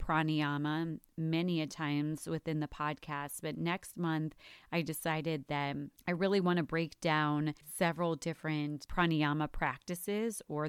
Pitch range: 150-170 Hz